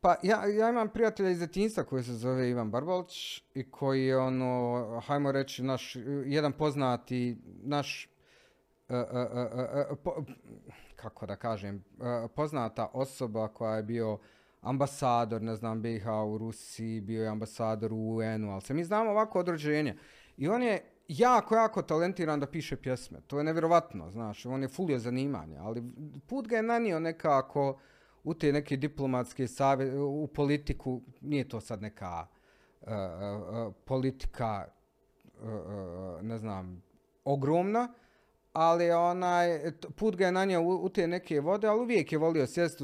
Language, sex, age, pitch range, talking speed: Croatian, male, 40-59, 115-160 Hz, 155 wpm